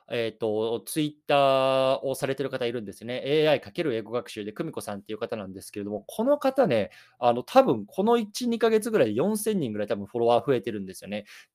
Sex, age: male, 20-39